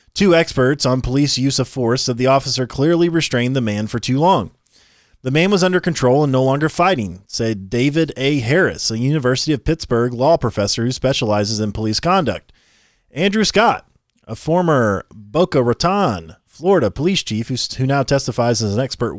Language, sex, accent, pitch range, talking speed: English, male, American, 115-150 Hz, 175 wpm